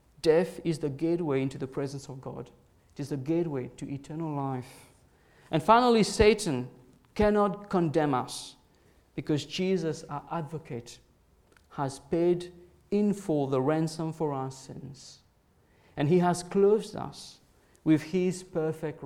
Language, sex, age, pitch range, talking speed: English, male, 50-69, 135-175 Hz, 135 wpm